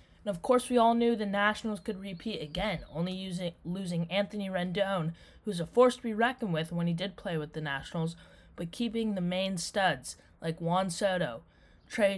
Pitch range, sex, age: 160-210 Hz, female, 20-39